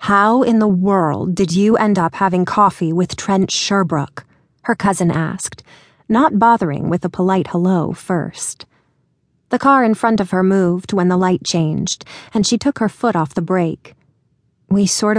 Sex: female